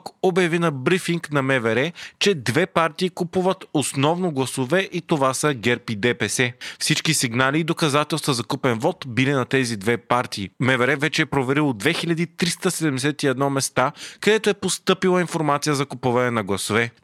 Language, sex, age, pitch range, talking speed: Bulgarian, male, 30-49, 130-170 Hz, 150 wpm